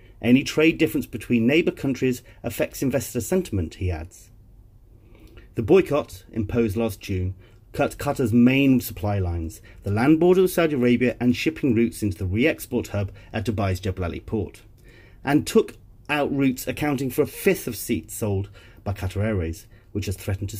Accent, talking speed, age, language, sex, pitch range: British, 165 wpm, 40-59, English, male, 100-120 Hz